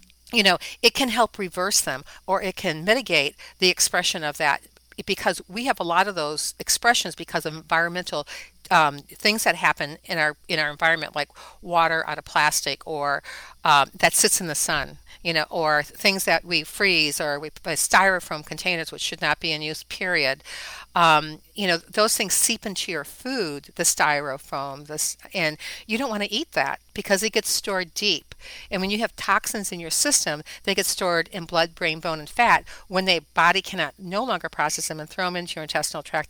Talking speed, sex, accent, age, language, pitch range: 200 wpm, female, American, 50-69, English, 155-195 Hz